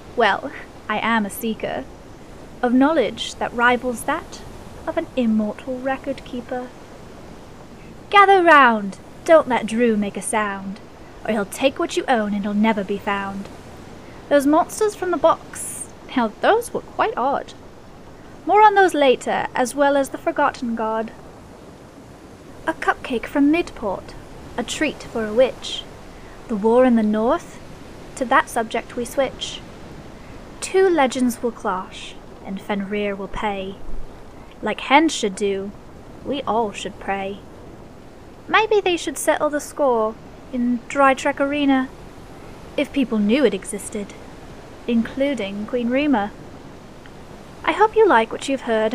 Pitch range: 215-285 Hz